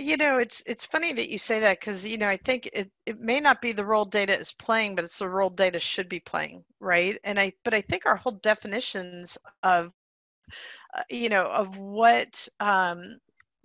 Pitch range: 190-235 Hz